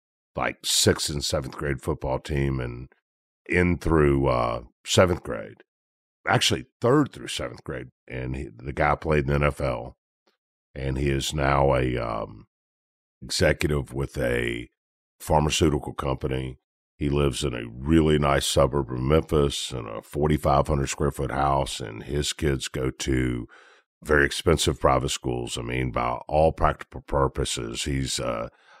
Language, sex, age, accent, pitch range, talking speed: English, male, 50-69, American, 65-75 Hz, 140 wpm